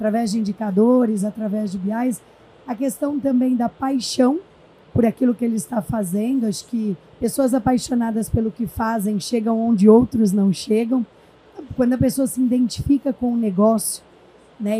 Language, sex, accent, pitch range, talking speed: Portuguese, female, Brazilian, 215-250 Hz, 155 wpm